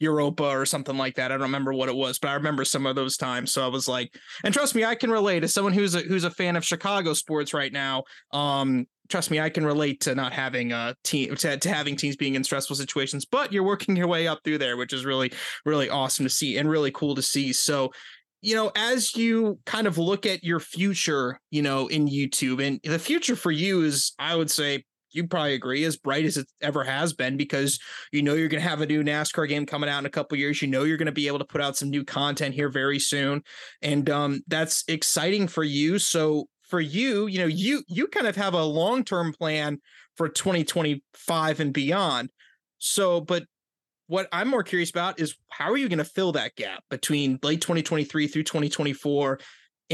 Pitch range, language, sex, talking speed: 140-170 Hz, English, male, 230 wpm